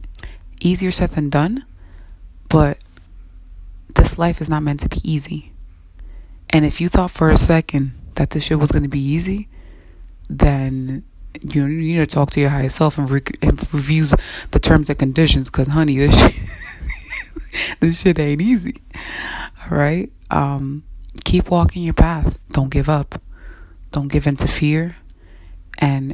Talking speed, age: 150 wpm, 20-39